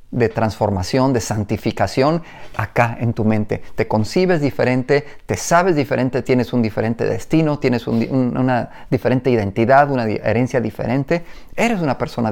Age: 40-59